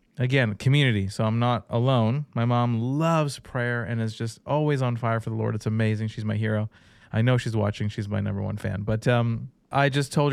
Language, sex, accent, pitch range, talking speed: English, male, American, 110-130 Hz, 220 wpm